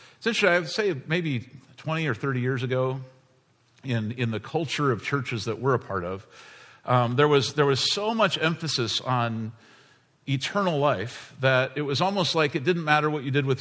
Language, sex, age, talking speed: English, male, 50-69, 195 wpm